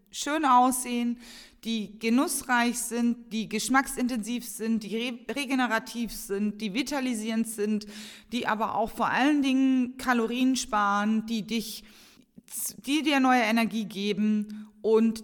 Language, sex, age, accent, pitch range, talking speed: German, female, 30-49, German, 215-255 Hz, 115 wpm